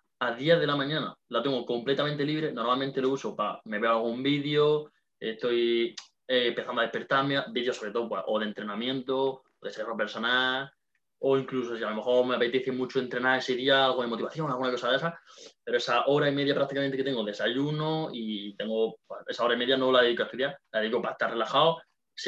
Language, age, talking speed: Spanish, 20-39, 215 wpm